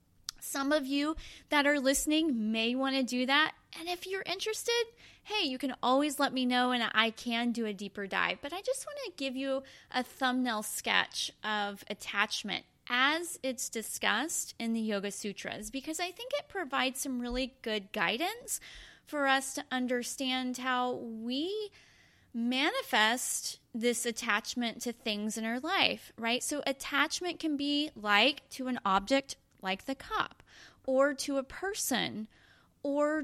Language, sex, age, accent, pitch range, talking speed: English, female, 20-39, American, 235-295 Hz, 160 wpm